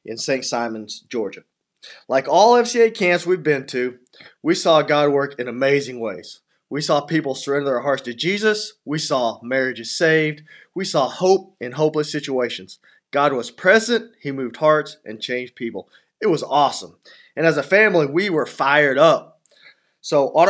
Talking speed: 170 wpm